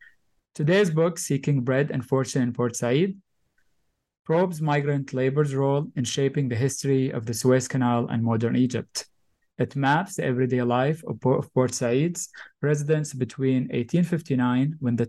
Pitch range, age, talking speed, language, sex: 125-150 Hz, 20-39, 145 wpm, English, male